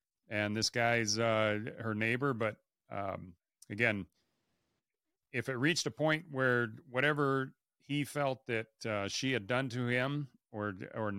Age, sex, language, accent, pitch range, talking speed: 40-59, male, English, American, 105-125 Hz, 145 wpm